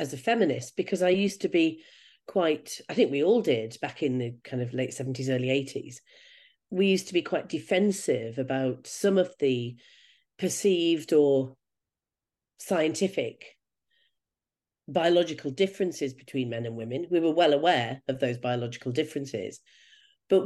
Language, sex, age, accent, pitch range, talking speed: English, female, 40-59, British, 135-195 Hz, 150 wpm